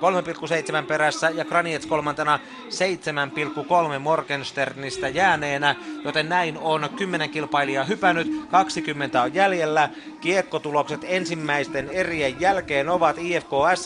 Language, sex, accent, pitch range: Finnish, male, native, 145-170 Hz